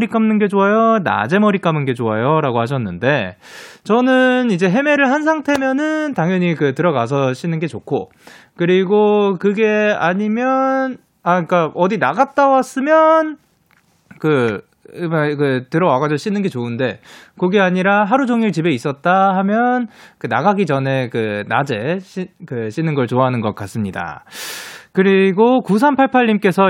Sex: male